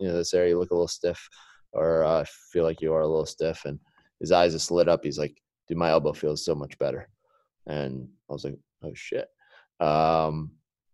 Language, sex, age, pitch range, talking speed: English, male, 20-39, 80-95 Hz, 220 wpm